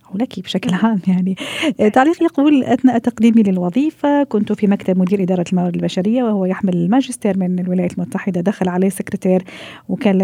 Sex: female